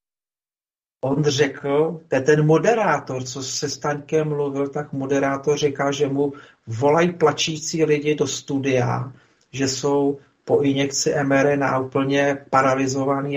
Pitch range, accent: 135-155 Hz, native